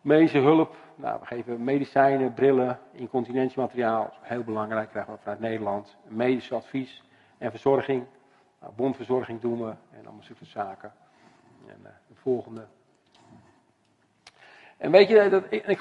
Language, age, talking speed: Dutch, 50-69, 135 wpm